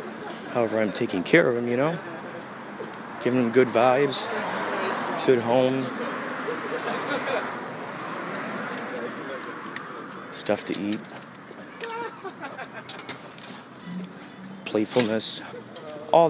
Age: 40-59